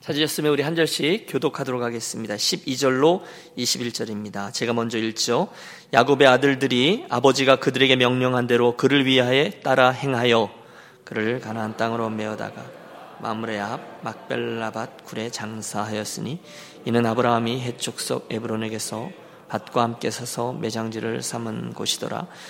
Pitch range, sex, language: 115-130 Hz, male, Korean